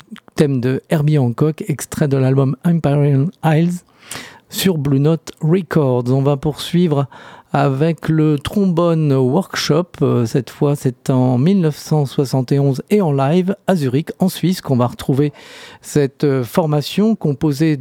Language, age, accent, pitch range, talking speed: French, 50-69, French, 135-170 Hz, 125 wpm